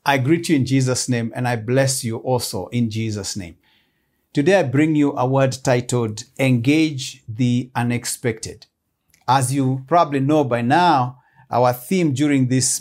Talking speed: 160 wpm